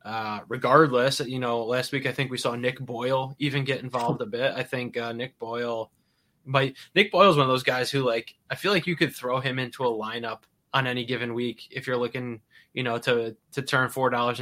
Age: 20-39